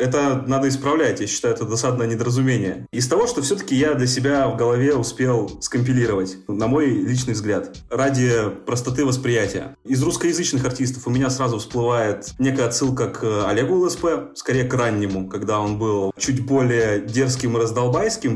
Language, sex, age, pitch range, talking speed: Russian, male, 20-39, 110-135 Hz, 160 wpm